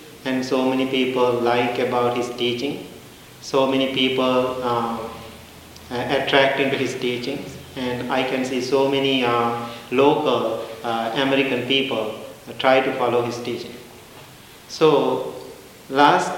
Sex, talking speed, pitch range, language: male, 125 wpm, 120-140 Hz, English